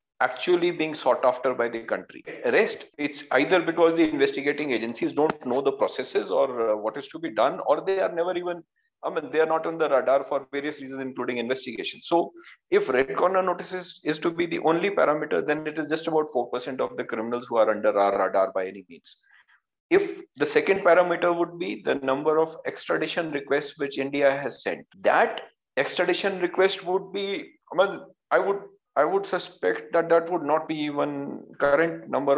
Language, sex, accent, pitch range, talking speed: English, male, Indian, 135-180 Hz, 195 wpm